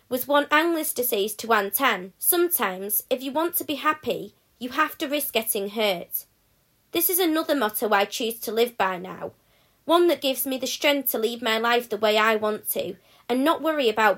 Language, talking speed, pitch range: English, 205 wpm, 220-295 Hz